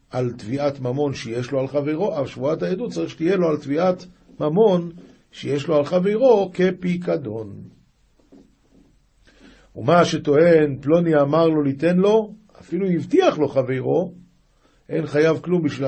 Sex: male